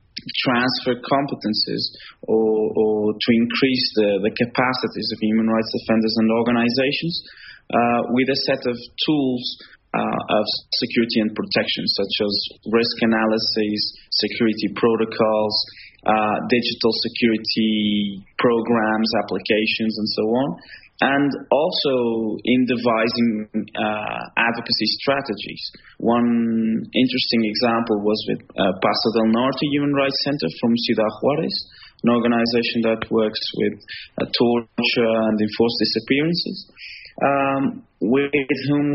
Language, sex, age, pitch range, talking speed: English, male, 20-39, 110-125 Hz, 115 wpm